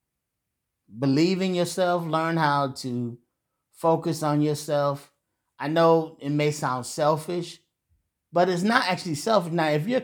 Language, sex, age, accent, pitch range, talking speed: English, male, 30-49, American, 110-140 Hz, 135 wpm